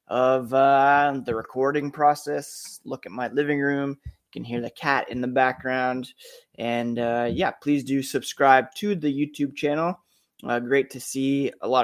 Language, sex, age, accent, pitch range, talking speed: English, male, 20-39, American, 125-145 Hz, 170 wpm